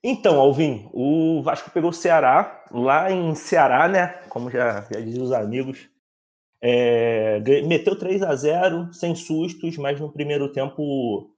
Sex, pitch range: male, 120-150 Hz